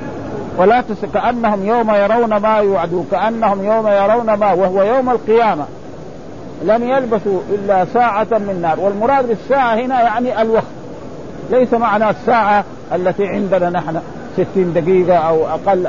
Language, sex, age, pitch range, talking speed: Arabic, male, 50-69, 195-240 Hz, 130 wpm